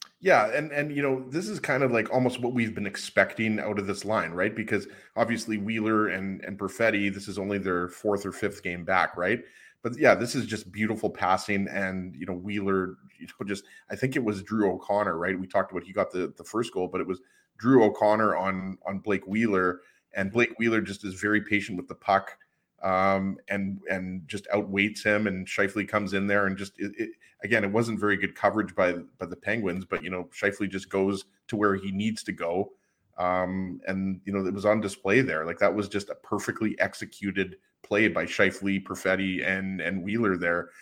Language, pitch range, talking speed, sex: English, 95-110 Hz, 210 wpm, male